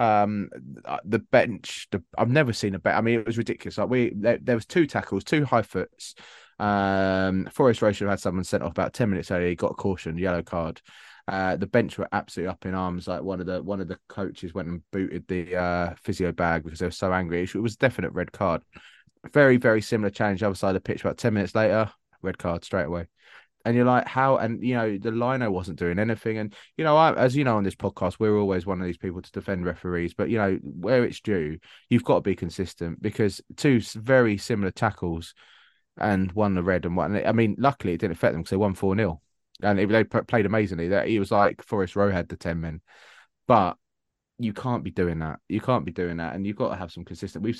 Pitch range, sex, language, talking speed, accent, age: 90-110 Hz, male, English, 240 wpm, British, 20-39